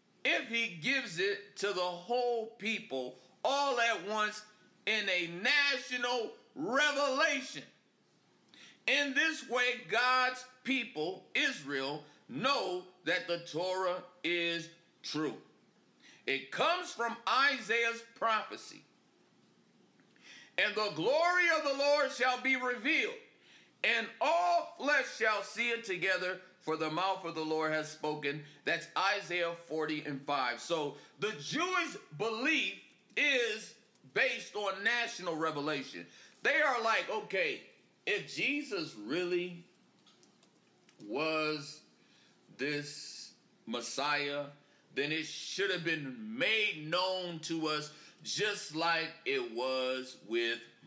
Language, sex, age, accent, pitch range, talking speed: English, male, 50-69, American, 160-265 Hz, 110 wpm